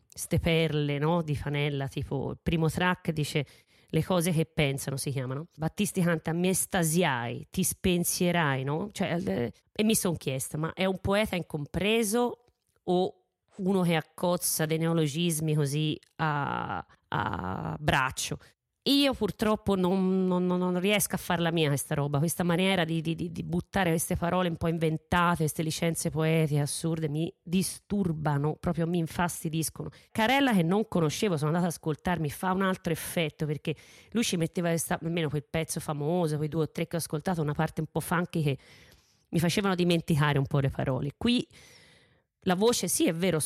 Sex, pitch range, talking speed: female, 155-185 Hz, 170 wpm